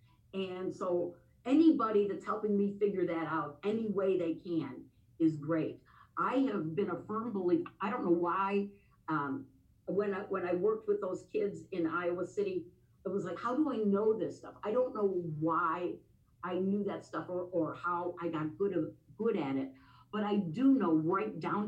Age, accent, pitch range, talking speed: 50-69, American, 170-225 Hz, 195 wpm